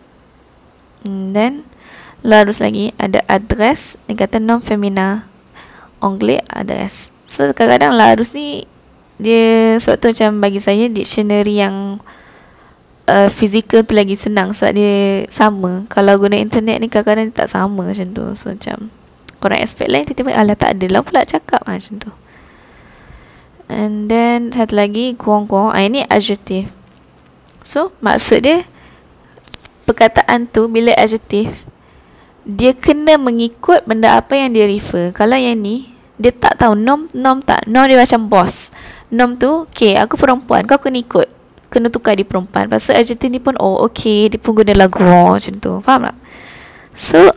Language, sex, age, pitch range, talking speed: Malay, female, 20-39, 200-240 Hz, 150 wpm